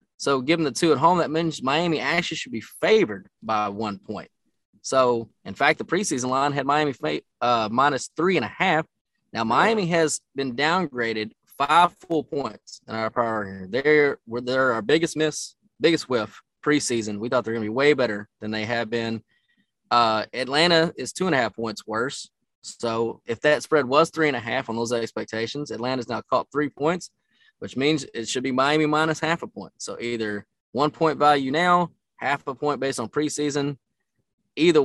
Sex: male